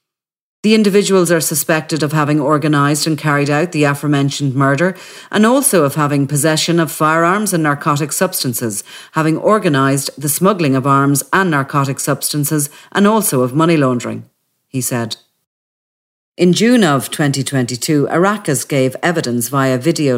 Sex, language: female, English